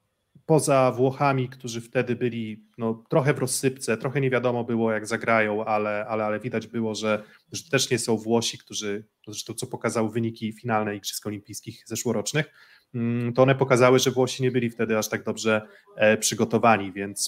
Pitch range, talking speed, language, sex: 110-130 Hz, 170 wpm, Polish, male